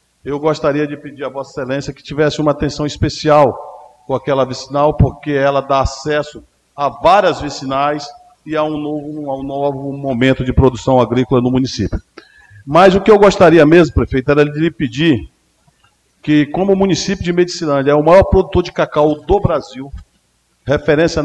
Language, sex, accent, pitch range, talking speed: Portuguese, male, Brazilian, 130-160 Hz, 170 wpm